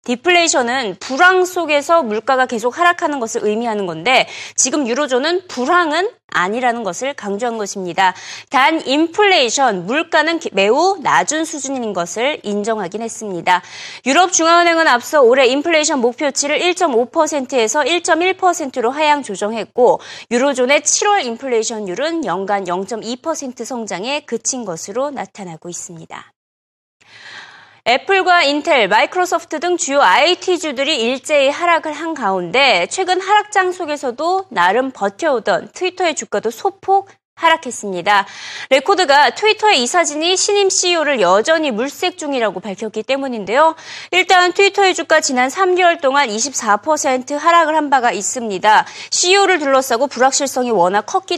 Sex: female